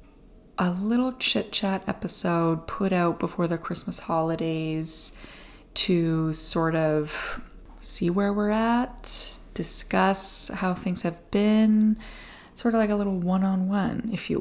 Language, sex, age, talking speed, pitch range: English, female, 20-39, 125 wpm, 160-205 Hz